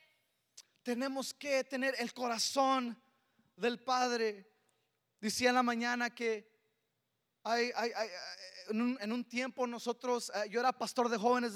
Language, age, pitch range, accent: Spanish, 20-39, 235-260 Hz, Mexican